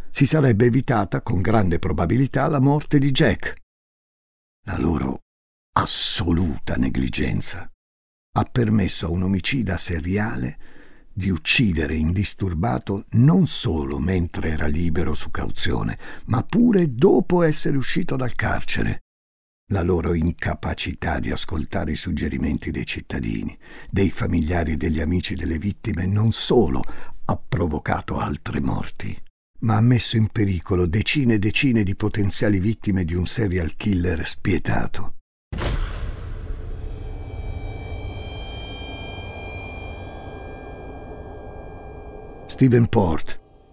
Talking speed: 105 wpm